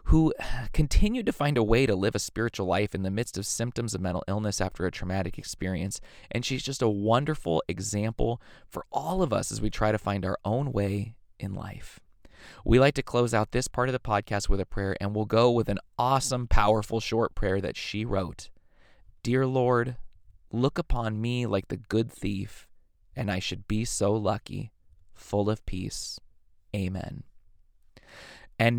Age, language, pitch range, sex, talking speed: 20-39, English, 95-120 Hz, male, 185 wpm